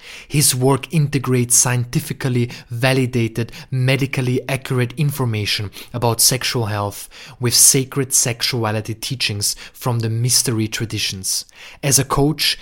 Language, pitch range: English, 115-135 Hz